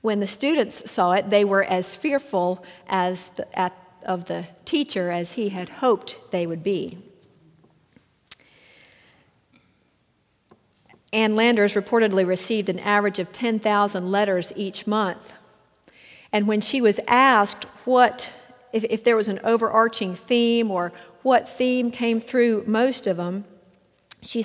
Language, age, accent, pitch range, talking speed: English, 50-69, American, 185-230 Hz, 135 wpm